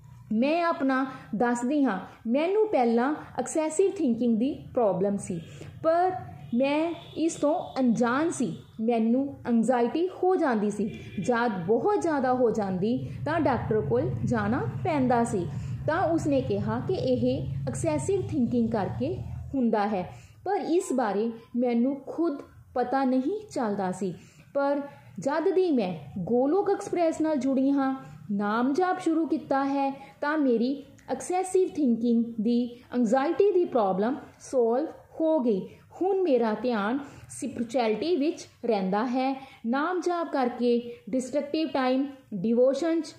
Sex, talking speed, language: female, 120 wpm, Punjabi